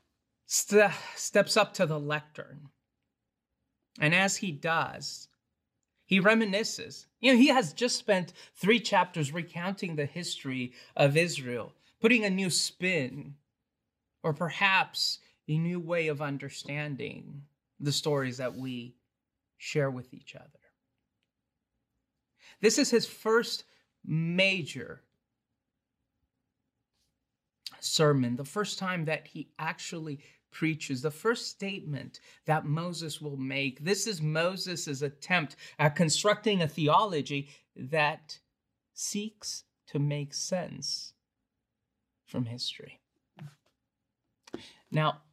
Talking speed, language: 105 wpm, English